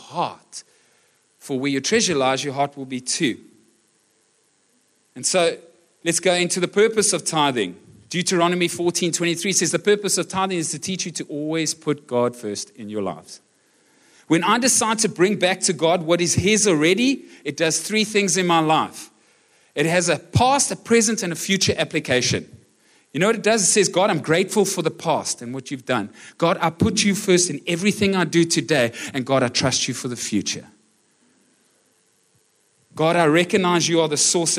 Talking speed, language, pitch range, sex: 195 wpm, English, 145-195 Hz, male